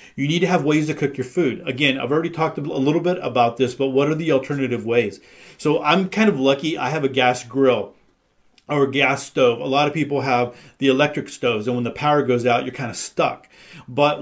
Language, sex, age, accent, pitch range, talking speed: English, male, 40-59, American, 130-155 Hz, 240 wpm